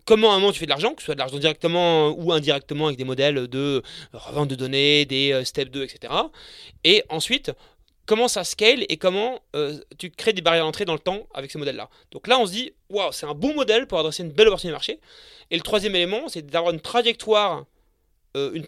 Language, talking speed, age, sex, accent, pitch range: French, 230 wpm, 30-49, male, French, 150-210 Hz